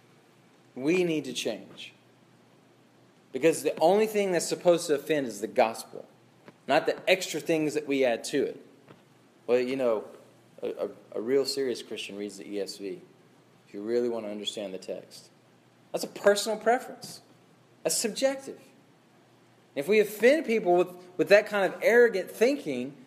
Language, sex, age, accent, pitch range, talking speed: English, male, 20-39, American, 135-215 Hz, 155 wpm